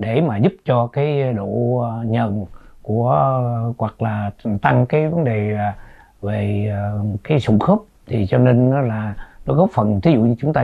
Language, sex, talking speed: Vietnamese, male, 175 wpm